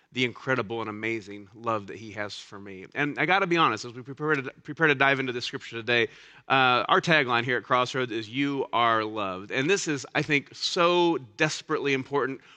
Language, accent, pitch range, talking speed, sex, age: English, American, 125-155 Hz, 205 wpm, male, 30-49